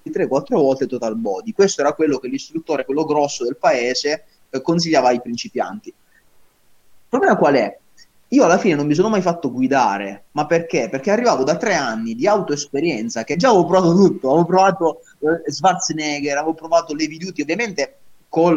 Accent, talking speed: native, 175 wpm